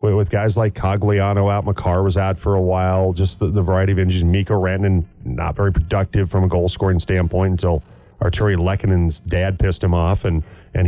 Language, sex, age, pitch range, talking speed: English, male, 40-59, 95-120 Hz, 195 wpm